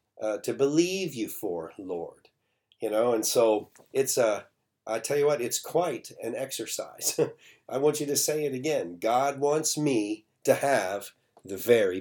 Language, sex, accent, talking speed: English, male, American, 170 wpm